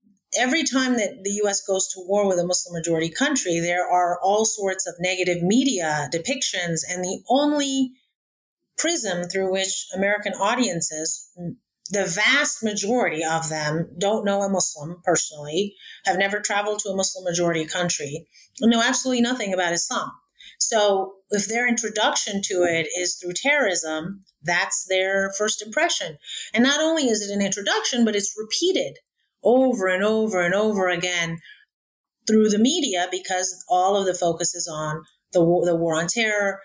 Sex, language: female, English